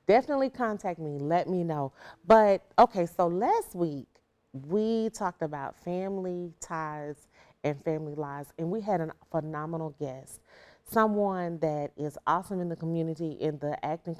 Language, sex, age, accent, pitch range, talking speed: English, female, 30-49, American, 155-190 Hz, 150 wpm